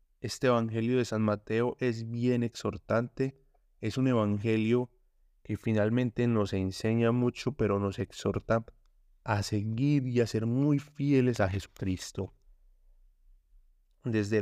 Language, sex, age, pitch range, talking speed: Spanish, male, 30-49, 100-125 Hz, 120 wpm